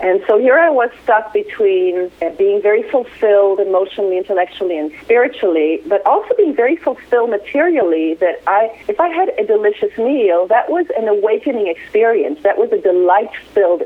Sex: female